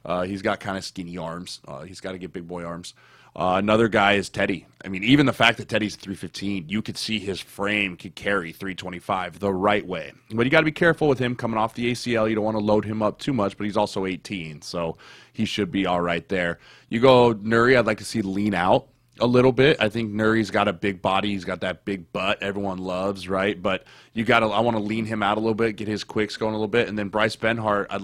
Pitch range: 95-115 Hz